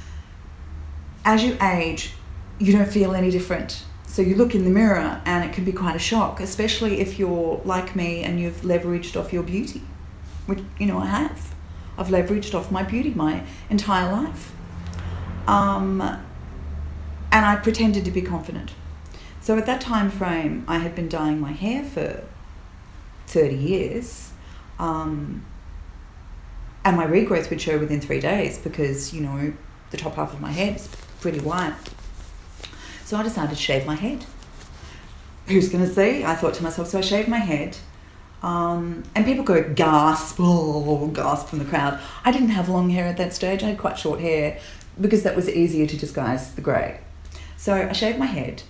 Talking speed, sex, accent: 175 wpm, female, Australian